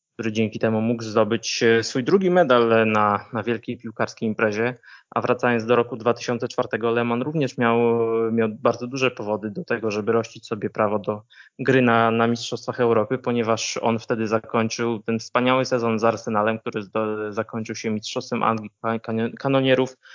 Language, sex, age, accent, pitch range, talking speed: Polish, male, 20-39, native, 110-120 Hz, 155 wpm